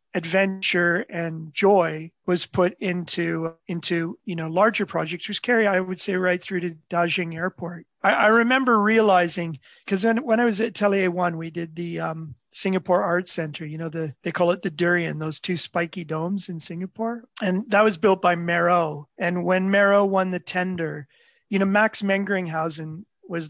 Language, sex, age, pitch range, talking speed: English, male, 30-49, 170-200 Hz, 180 wpm